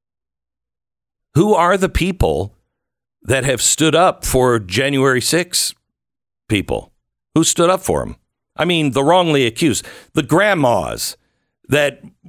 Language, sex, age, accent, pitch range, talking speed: English, male, 60-79, American, 110-170 Hz, 120 wpm